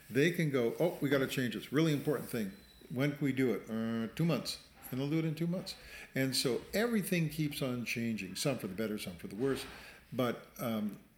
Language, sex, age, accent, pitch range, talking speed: English, male, 50-69, American, 110-140 Hz, 230 wpm